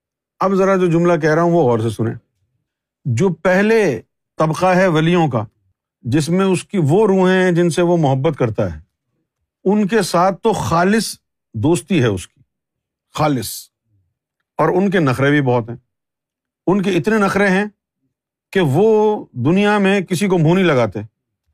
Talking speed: 165 wpm